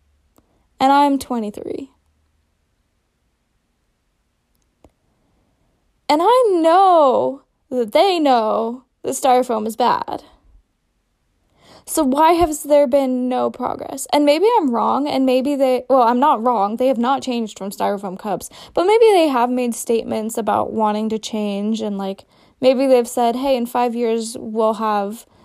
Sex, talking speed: female, 140 wpm